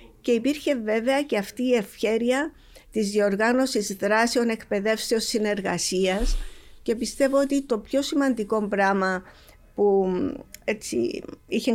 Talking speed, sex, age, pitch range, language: 110 wpm, female, 50-69, 195-245 Hz, Greek